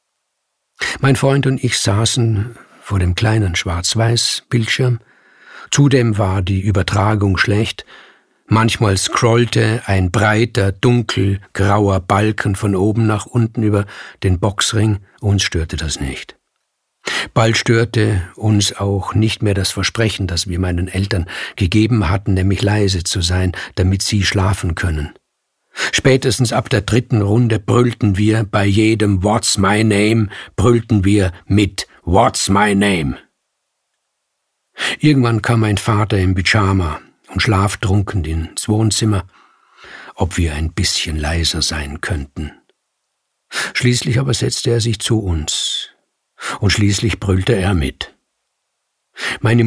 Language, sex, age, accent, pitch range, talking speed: German, male, 50-69, German, 95-115 Hz, 120 wpm